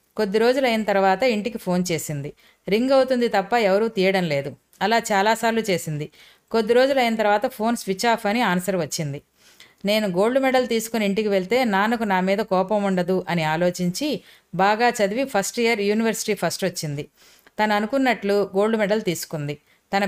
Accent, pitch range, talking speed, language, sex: native, 185-225 Hz, 150 wpm, Telugu, female